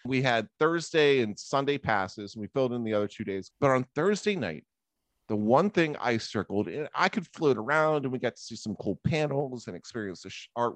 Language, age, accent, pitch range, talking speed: English, 30-49, American, 105-155 Hz, 230 wpm